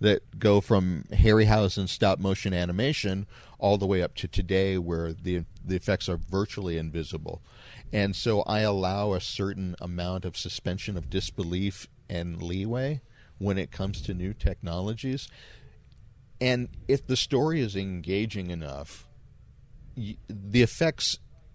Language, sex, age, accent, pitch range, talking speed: English, male, 40-59, American, 85-105 Hz, 135 wpm